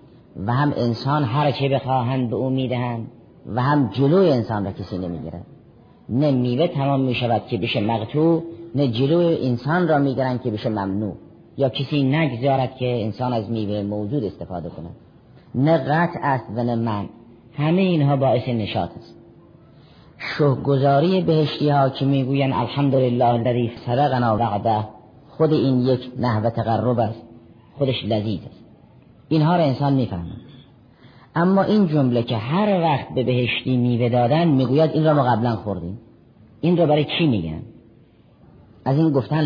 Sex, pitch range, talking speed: female, 115-145 Hz, 150 wpm